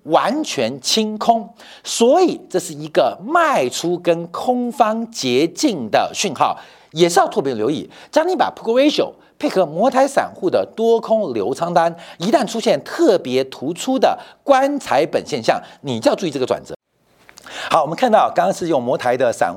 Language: Chinese